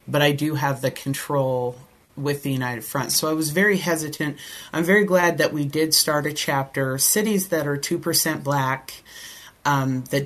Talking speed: 180 wpm